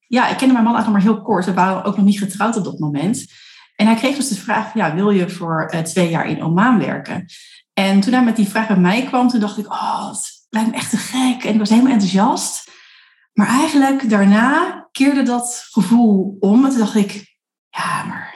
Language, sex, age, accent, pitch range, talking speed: Dutch, female, 30-49, Dutch, 185-230 Hz, 225 wpm